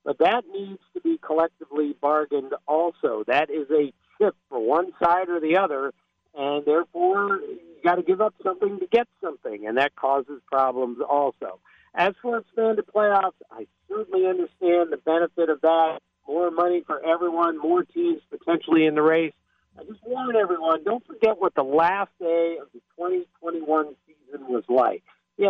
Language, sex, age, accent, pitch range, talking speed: English, male, 50-69, American, 155-235 Hz, 170 wpm